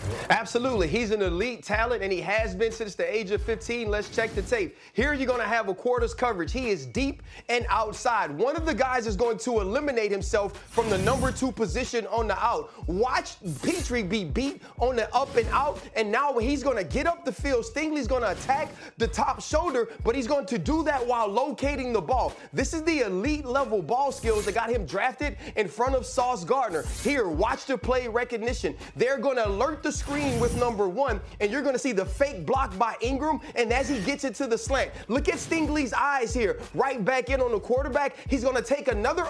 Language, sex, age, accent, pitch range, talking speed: English, male, 30-49, American, 230-285 Hz, 225 wpm